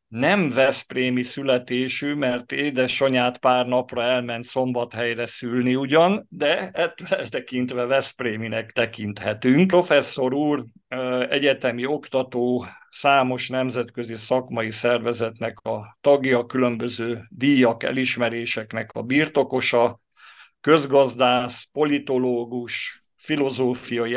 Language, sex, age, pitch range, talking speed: Hungarian, male, 50-69, 115-130 Hz, 85 wpm